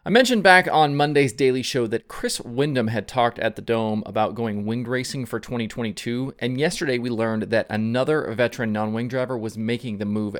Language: English